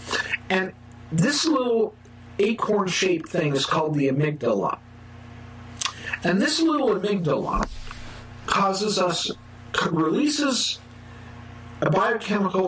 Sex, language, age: male, English, 50-69